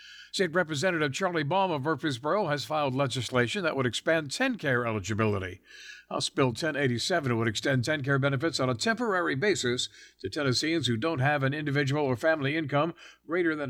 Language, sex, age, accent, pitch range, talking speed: English, male, 60-79, American, 120-160 Hz, 160 wpm